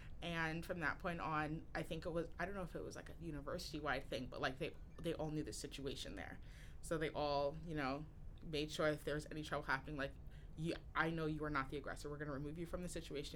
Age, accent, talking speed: 20-39, American, 260 wpm